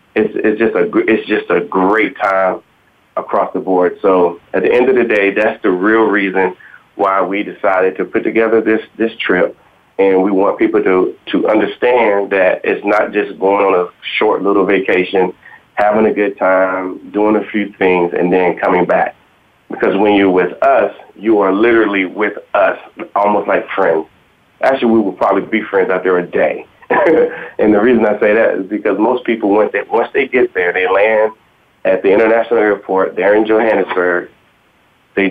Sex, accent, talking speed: male, American, 185 wpm